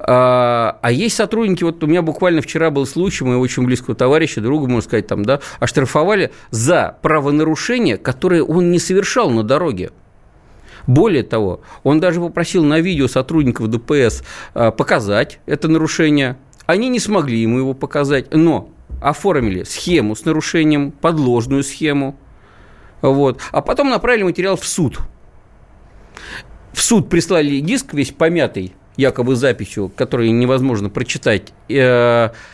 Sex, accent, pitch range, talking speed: male, native, 120-165 Hz, 130 wpm